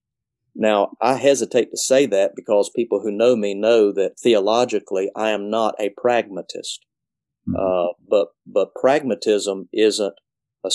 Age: 40-59